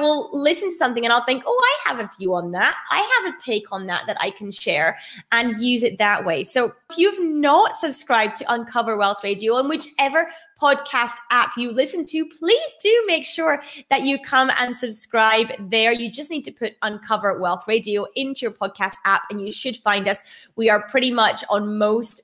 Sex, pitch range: female, 200-260 Hz